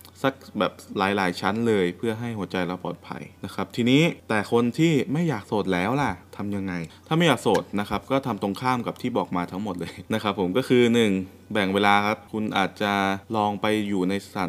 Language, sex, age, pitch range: Thai, male, 20-39, 95-125 Hz